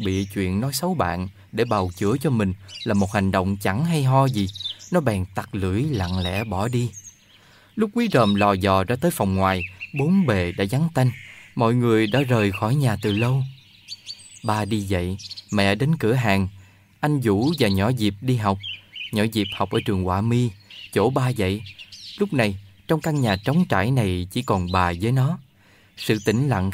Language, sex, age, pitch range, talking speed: Vietnamese, male, 20-39, 100-135 Hz, 195 wpm